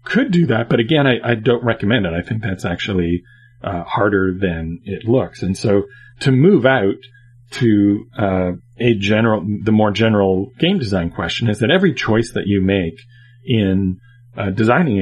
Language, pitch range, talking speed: English, 100-125 Hz, 175 wpm